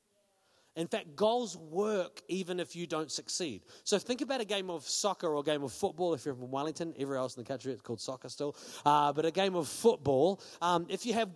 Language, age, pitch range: English, 30-49, 160-220 Hz